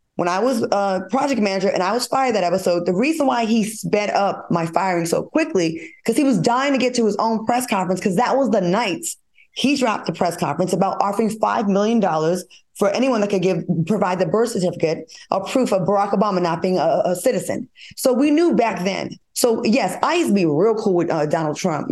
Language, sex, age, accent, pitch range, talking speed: English, female, 20-39, American, 185-255 Hz, 230 wpm